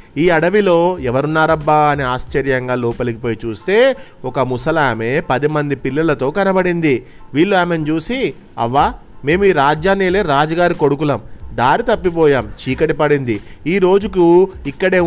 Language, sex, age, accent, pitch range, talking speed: Telugu, male, 30-49, native, 130-170 Hz, 125 wpm